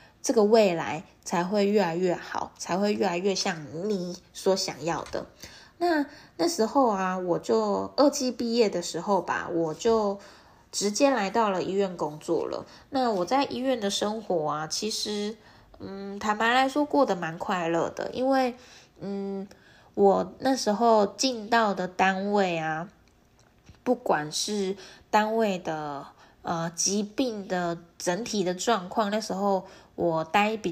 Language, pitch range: Chinese, 175-225 Hz